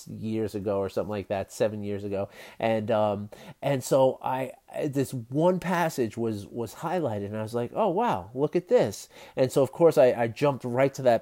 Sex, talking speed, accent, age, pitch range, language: male, 210 wpm, American, 30-49, 110-135 Hz, English